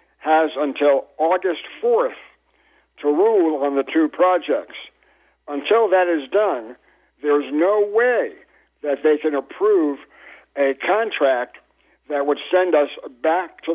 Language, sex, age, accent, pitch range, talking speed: English, male, 60-79, American, 140-205 Hz, 125 wpm